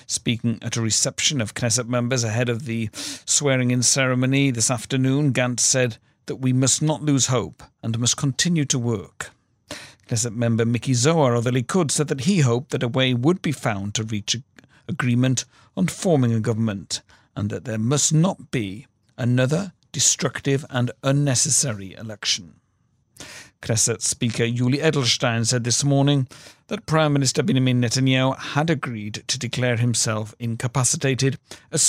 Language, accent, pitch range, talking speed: English, British, 115-140 Hz, 155 wpm